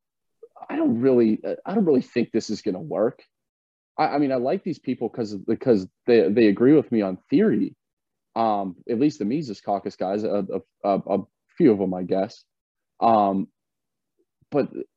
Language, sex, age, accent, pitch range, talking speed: English, male, 30-49, American, 100-125 Hz, 175 wpm